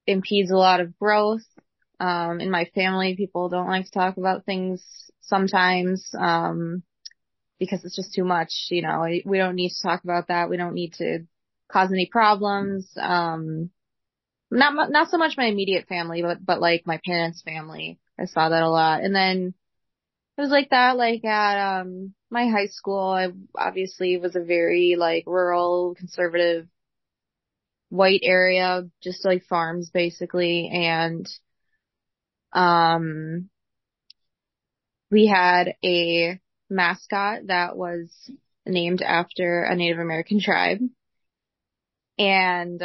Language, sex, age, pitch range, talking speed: English, female, 20-39, 175-200 Hz, 140 wpm